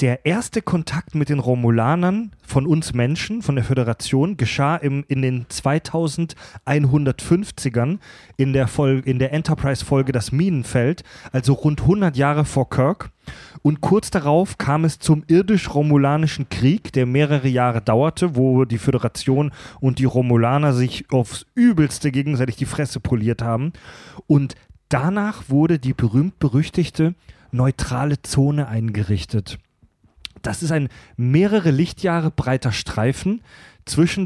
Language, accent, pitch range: German, German, 125-155 Hz